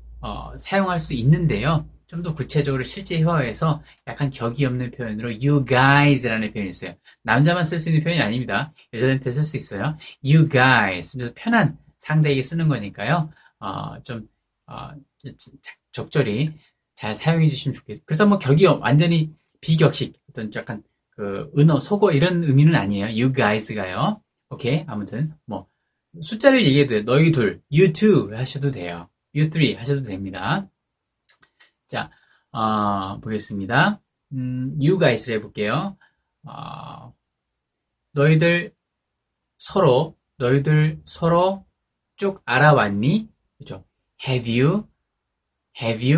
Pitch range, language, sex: 115-160 Hz, Korean, male